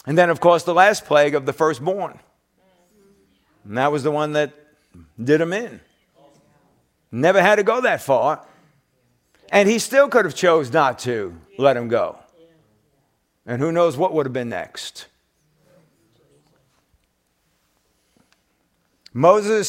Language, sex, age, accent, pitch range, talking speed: English, male, 50-69, American, 130-170 Hz, 135 wpm